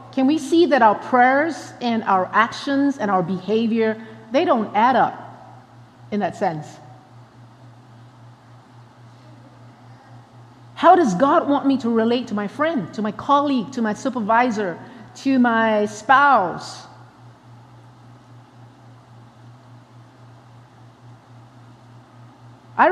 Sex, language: female, English